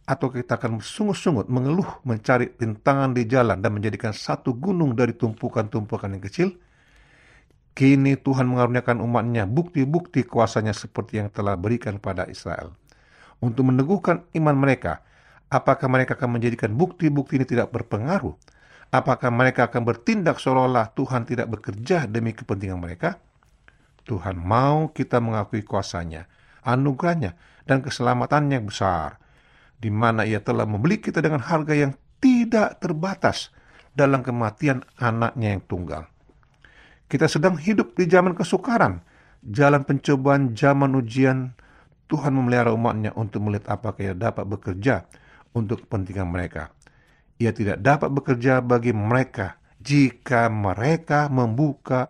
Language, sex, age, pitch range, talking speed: Indonesian, male, 50-69, 110-140 Hz, 125 wpm